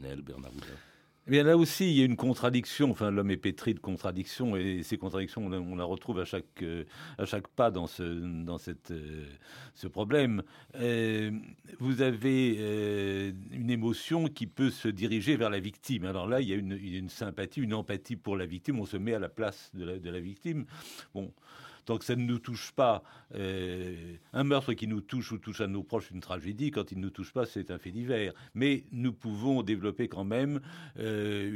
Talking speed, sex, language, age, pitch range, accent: 200 wpm, male, French, 50-69, 95-130 Hz, French